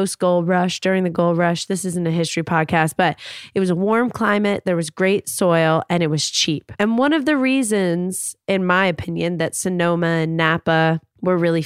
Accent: American